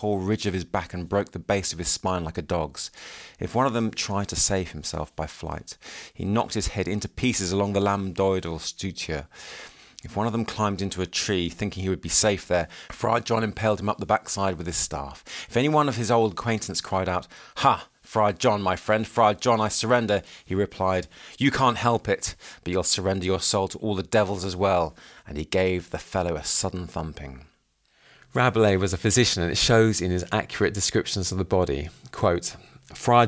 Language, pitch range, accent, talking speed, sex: English, 90-110 Hz, British, 215 wpm, male